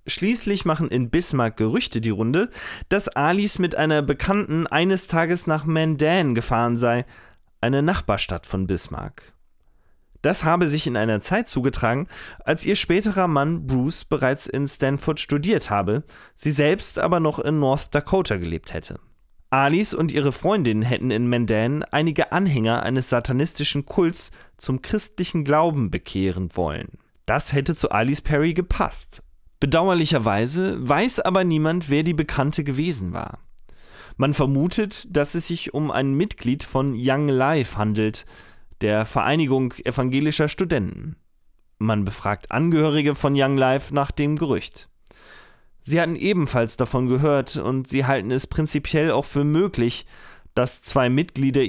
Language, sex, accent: German, male, German